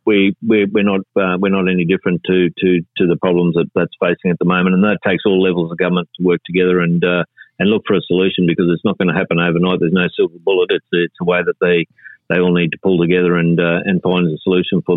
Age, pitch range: 40-59, 90-95 Hz